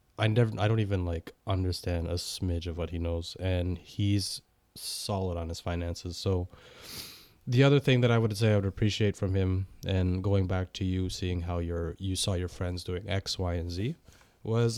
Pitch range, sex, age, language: 90-110 Hz, male, 20-39, English